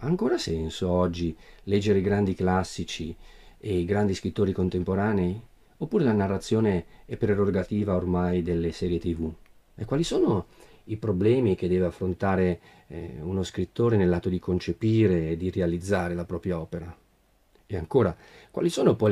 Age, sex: 40-59, male